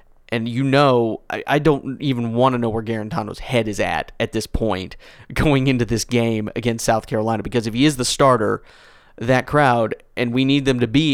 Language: English